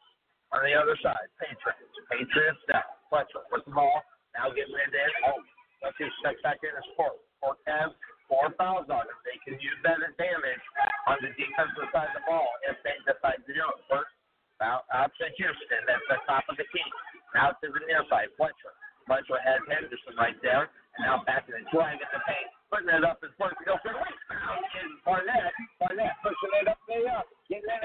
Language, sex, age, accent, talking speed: English, male, 50-69, American, 165 wpm